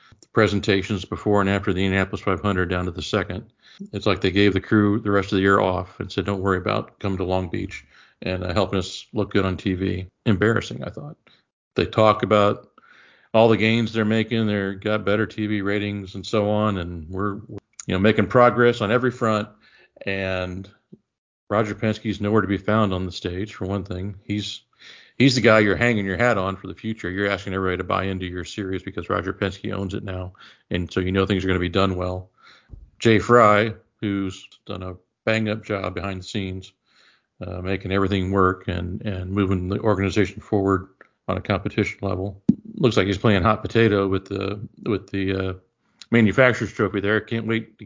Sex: male